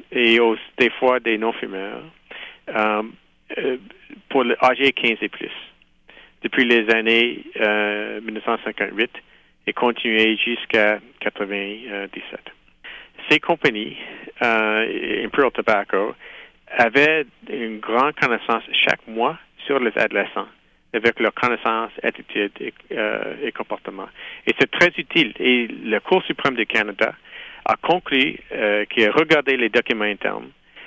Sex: male